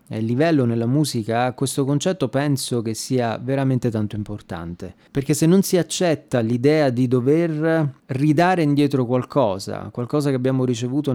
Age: 30-49